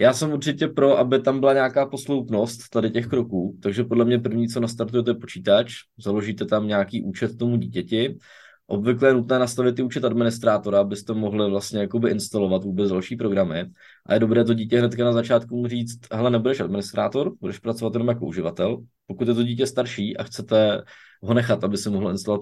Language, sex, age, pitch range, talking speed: Czech, male, 20-39, 105-120 Hz, 185 wpm